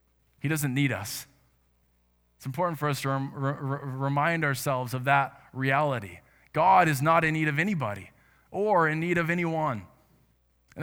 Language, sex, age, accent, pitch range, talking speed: English, male, 20-39, American, 125-170 Hz, 160 wpm